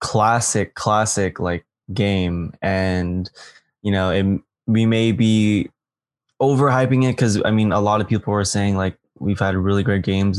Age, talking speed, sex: 20-39, 160 wpm, male